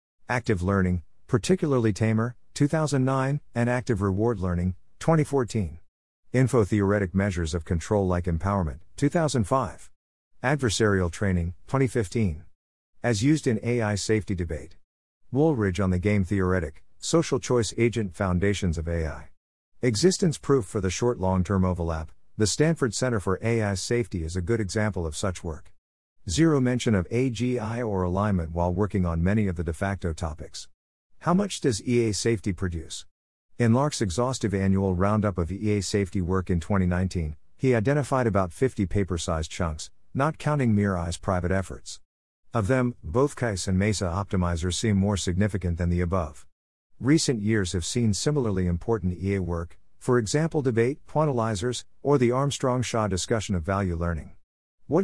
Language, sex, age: English, male, 50-69